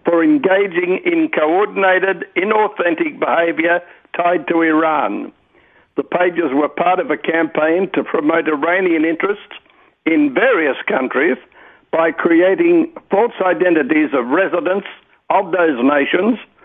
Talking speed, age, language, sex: 115 wpm, 60-79, English, male